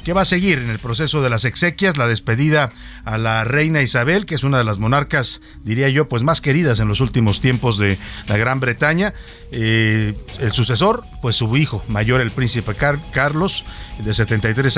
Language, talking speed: Spanish, 190 wpm